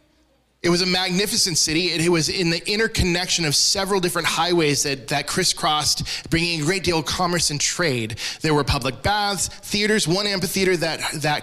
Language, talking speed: English, 185 wpm